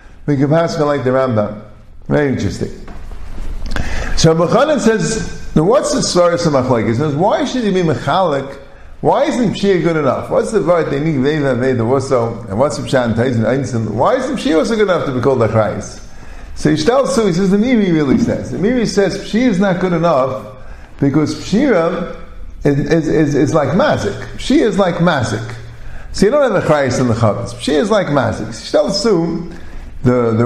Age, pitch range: 50-69, 120-190 Hz